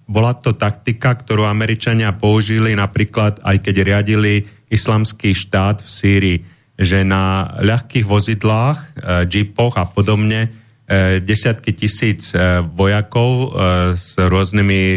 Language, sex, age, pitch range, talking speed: Slovak, male, 30-49, 100-115 Hz, 105 wpm